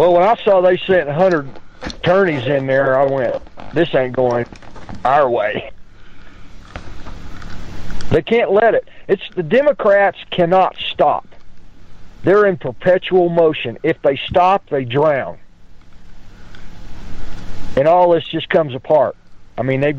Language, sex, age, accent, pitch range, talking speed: English, male, 50-69, American, 95-160 Hz, 130 wpm